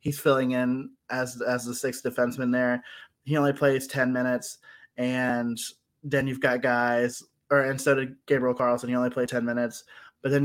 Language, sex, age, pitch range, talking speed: English, male, 20-39, 125-145 Hz, 185 wpm